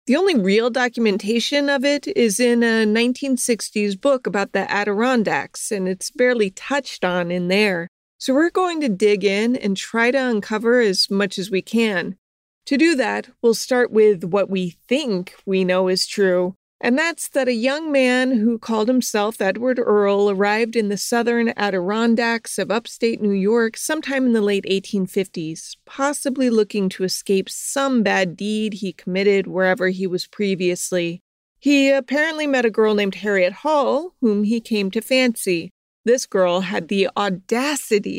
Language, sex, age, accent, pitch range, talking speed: English, female, 30-49, American, 200-255 Hz, 165 wpm